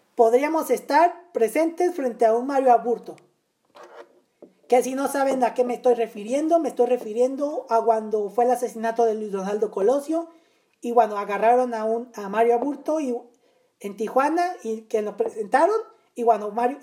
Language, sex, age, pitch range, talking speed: Spanish, female, 40-59, 225-310 Hz, 170 wpm